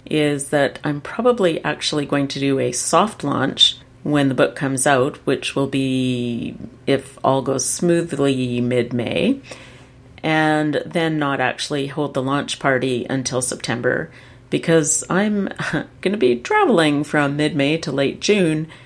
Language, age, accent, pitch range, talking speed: English, 40-59, American, 130-165 Hz, 145 wpm